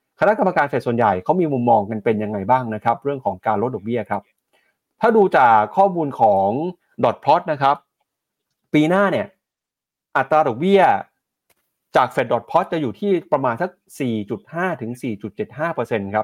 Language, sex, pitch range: Thai, male, 110-145 Hz